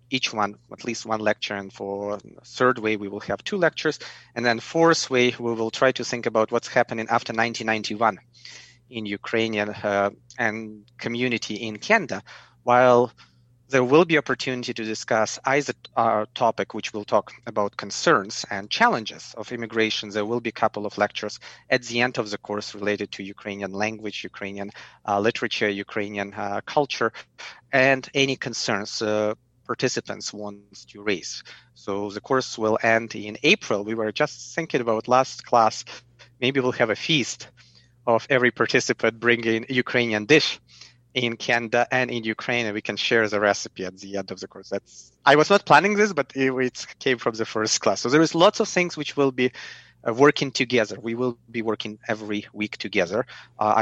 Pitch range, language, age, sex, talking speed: 105-125 Hz, English, 30-49, male, 180 wpm